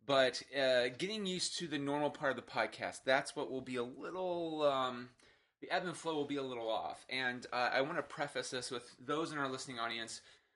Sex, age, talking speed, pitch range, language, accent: male, 30-49, 225 wpm, 115-150 Hz, English, American